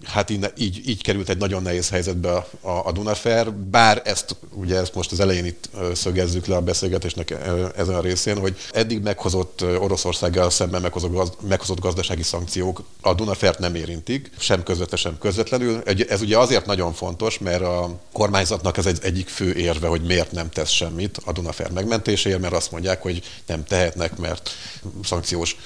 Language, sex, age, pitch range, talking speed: Hungarian, male, 40-59, 90-100 Hz, 175 wpm